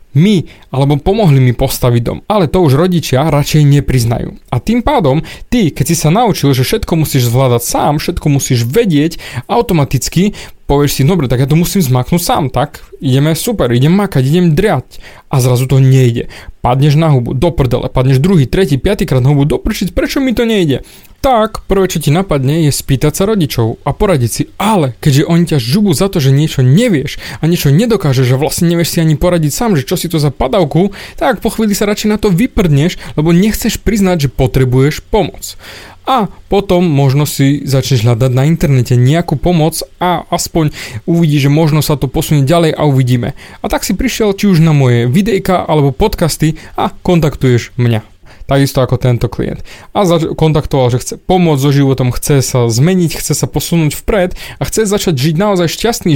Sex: male